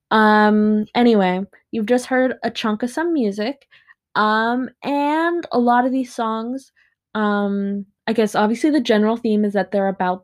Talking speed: 165 wpm